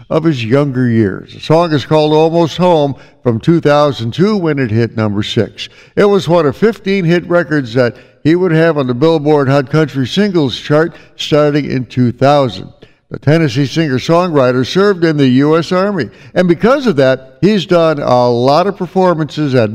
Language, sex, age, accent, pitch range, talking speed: English, male, 60-79, American, 135-175 Hz, 175 wpm